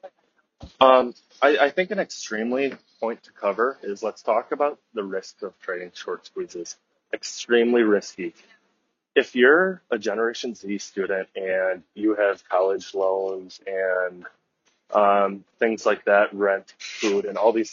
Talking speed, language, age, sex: 140 wpm, English, 20-39, male